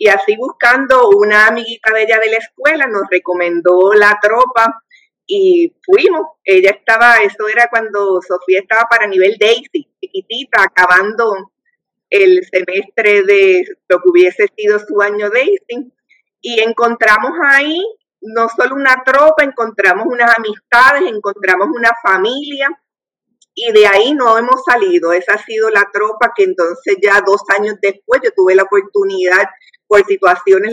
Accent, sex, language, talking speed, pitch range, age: American, female, Spanish, 145 wpm, 195-300 Hz, 50-69